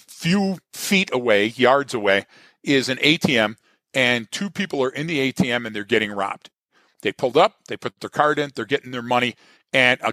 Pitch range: 115-150 Hz